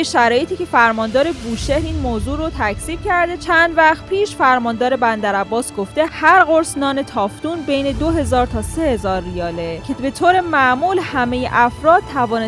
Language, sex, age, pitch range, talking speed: Persian, female, 10-29, 230-320 Hz, 150 wpm